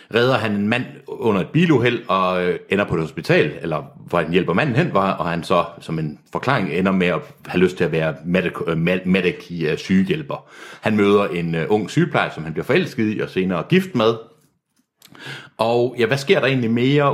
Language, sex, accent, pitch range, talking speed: Danish, male, native, 90-125 Hz, 195 wpm